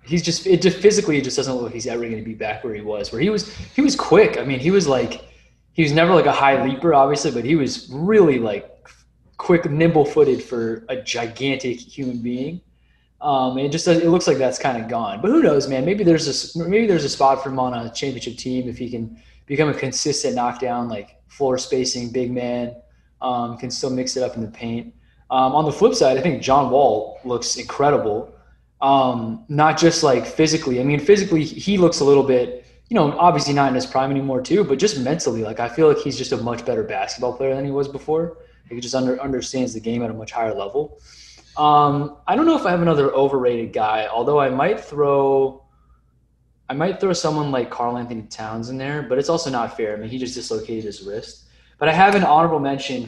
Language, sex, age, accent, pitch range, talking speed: English, male, 20-39, American, 120-160 Hz, 230 wpm